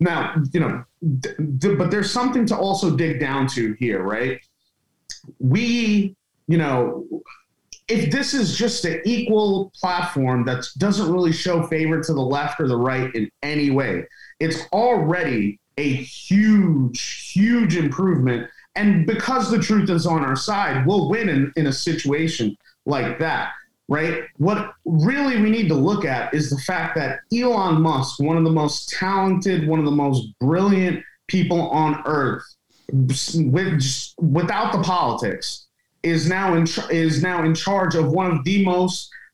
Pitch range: 145-190 Hz